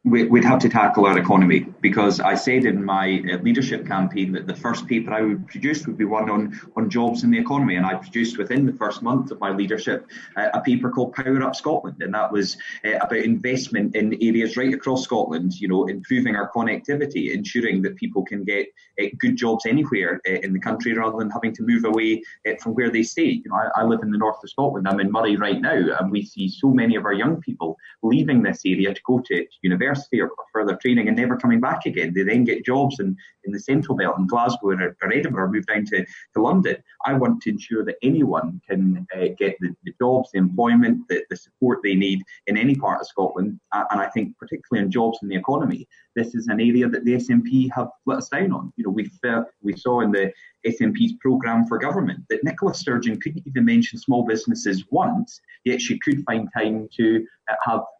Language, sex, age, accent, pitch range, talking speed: English, male, 20-39, British, 105-135 Hz, 225 wpm